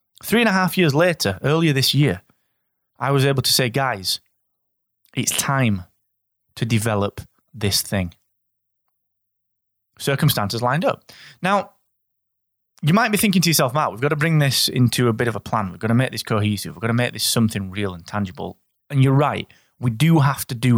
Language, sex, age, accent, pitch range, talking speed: English, male, 20-39, British, 105-155 Hz, 190 wpm